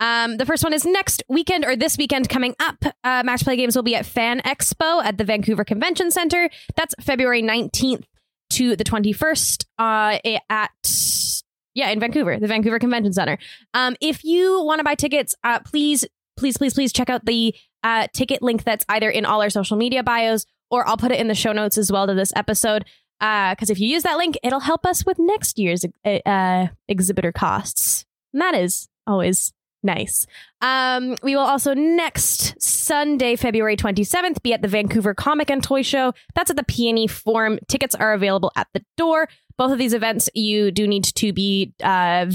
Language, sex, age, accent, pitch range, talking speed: English, female, 10-29, American, 215-285 Hz, 195 wpm